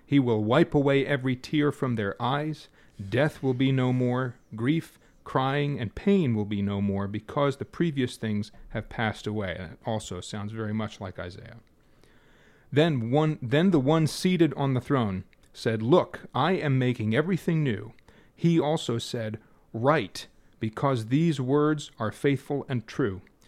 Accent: American